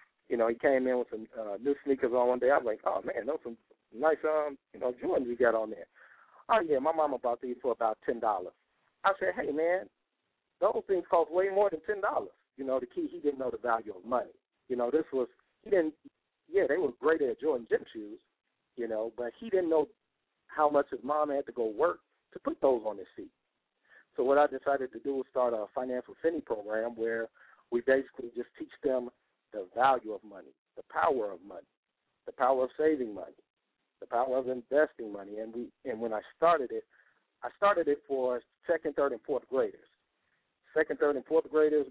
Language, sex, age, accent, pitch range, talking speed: English, male, 50-69, American, 120-195 Hz, 220 wpm